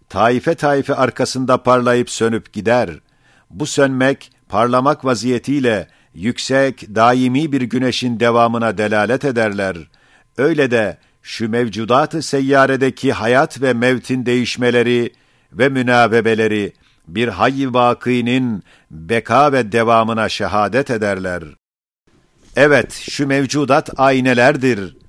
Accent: native